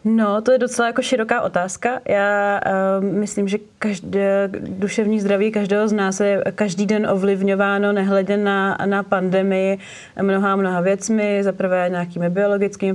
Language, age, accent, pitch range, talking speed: Czech, 30-49, native, 180-195 Hz, 145 wpm